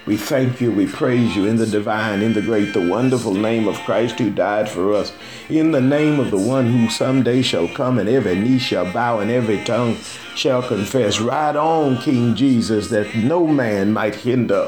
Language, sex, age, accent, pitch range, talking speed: English, male, 50-69, American, 110-145 Hz, 205 wpm